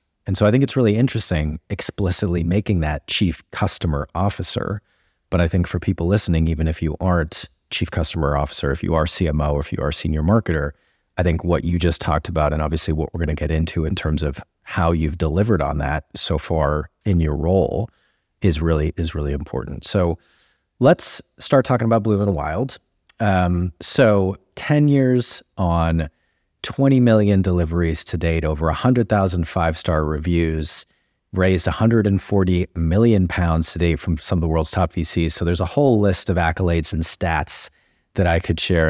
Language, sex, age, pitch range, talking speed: English, male, 30-49, 80-100 Hz, 180 wpm